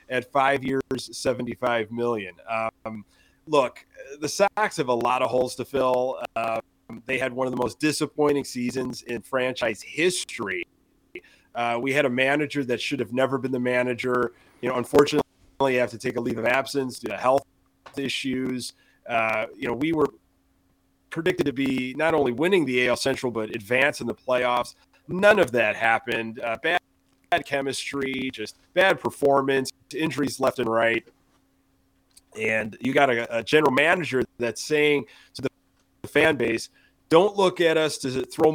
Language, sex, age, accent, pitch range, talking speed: English, male, 30-49, American, 120-150 Hz, 170 wpm